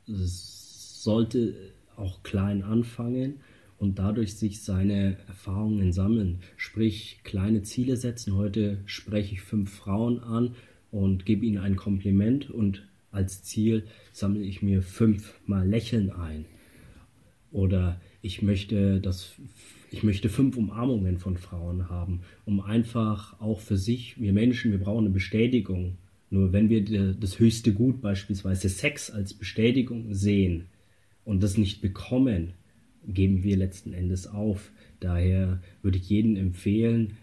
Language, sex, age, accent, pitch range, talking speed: German, male, 30-49, German, 95-110 Hz, 130 wpm